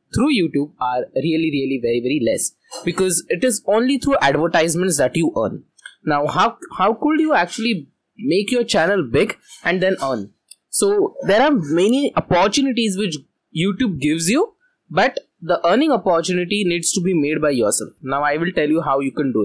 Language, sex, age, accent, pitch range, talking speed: English, male, 20-39, Indian, 155-225 Hz, 180 wpm